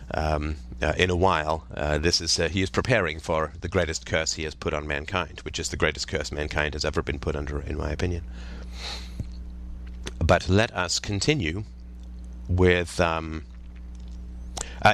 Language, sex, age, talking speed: English, male, 30-49, 170 wpm